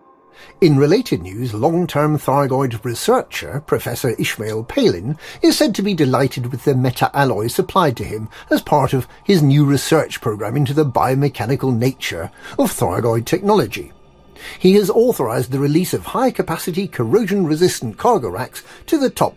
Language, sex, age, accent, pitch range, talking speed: English, male, 50-69, British, 120-175 Hz, 145 wpm